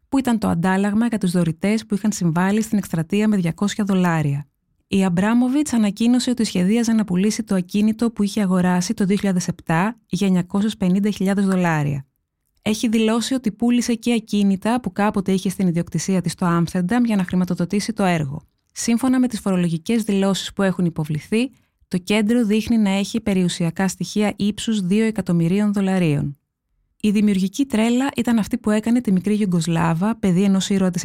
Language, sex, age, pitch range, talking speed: Greek, female, 20-39, 175-215 Hz, 160 wpm